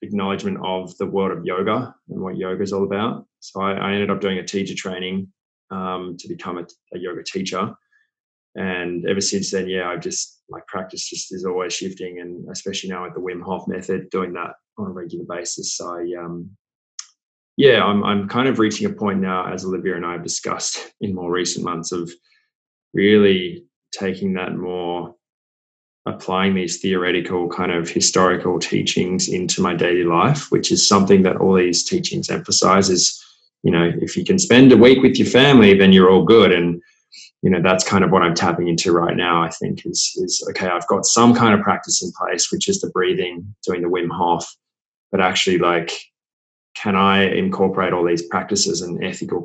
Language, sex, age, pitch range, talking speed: English, male, 20-39, 90-100 Hz, 195 wpm